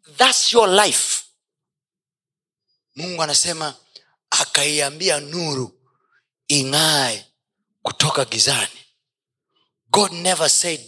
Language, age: Swahili, 30-49